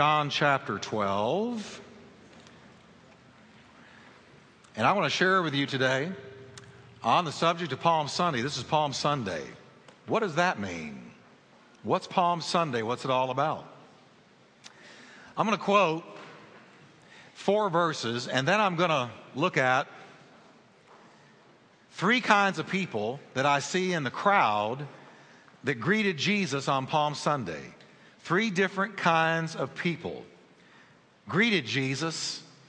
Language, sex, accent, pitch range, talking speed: English, male, American, 140-195 Hz, 125 wpm